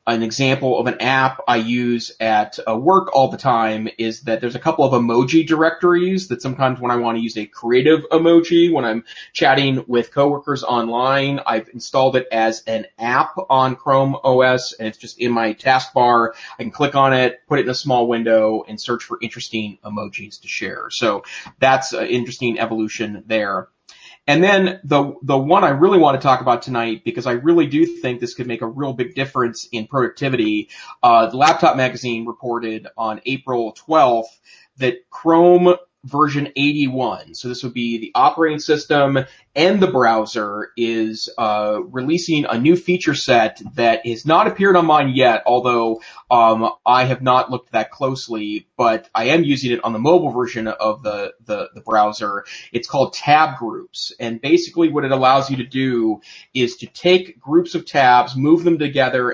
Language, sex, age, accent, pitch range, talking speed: English, male, 30-49, American, 115-150 Hz, 185 wpm